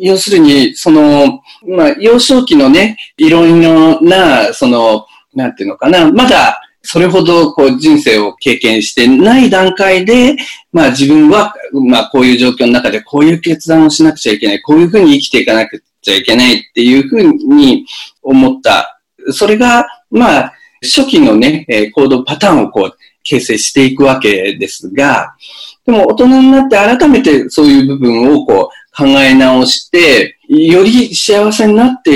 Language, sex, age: Japanese, male, 40-59